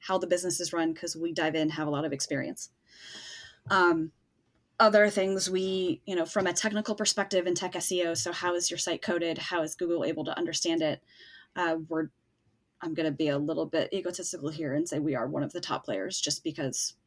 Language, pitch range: English, 160-190 Hz